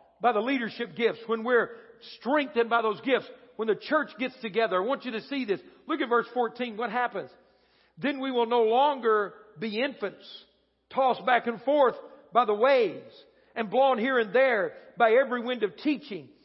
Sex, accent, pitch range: male, American, 225-275 Hz